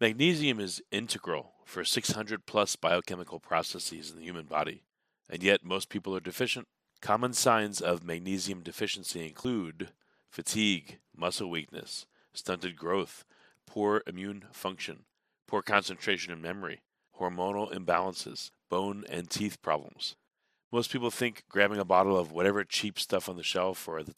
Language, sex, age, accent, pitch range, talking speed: English, male, 40-59, American, 85-105 Hz, 140 wpm